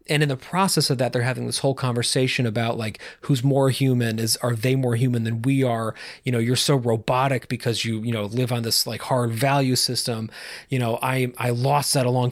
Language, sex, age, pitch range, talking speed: English, male, 30-49, 120-145 Hz, 235 wpm